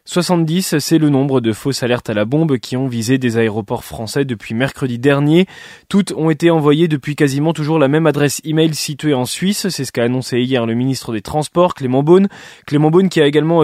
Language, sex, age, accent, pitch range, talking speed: French, male, 20-39, French, 130-165 Hz, 215 wpm